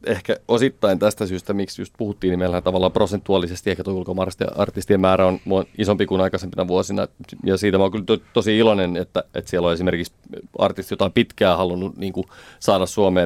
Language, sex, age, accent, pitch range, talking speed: Finnish, male, 30-49, native, 95-105 Hz, 180 wpm